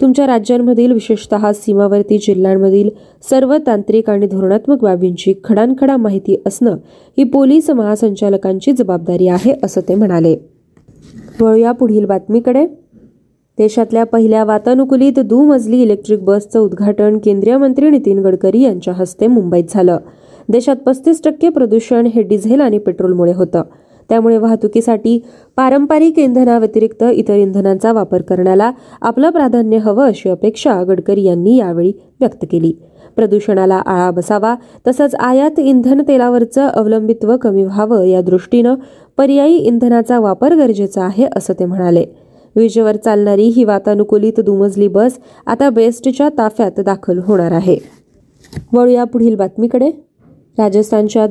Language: Marathi